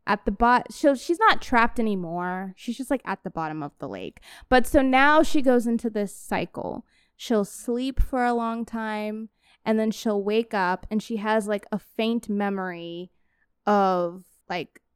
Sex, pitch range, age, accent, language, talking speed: female, 190-235 Hz, 20-39, American, English, 180 wpm